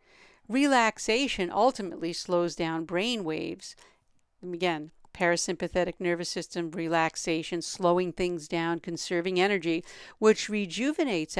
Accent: American